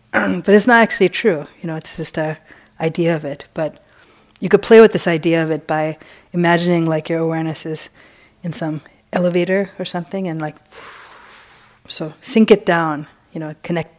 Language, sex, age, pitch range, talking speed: English, female, 30-49, 160-180 Hz, 180 wpm